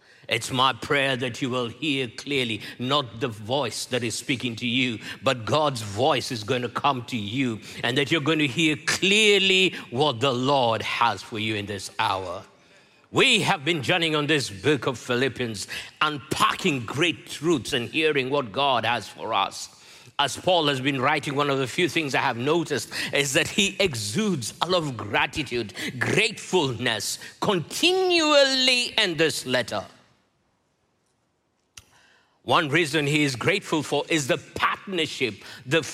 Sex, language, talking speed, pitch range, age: male, English, 160 wpm, 130-180 Hz, 50-69